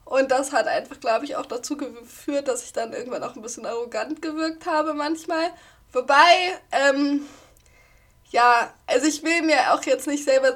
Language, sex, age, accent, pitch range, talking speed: German, female, 10-29, German, 255-295 Hz, 175 wpm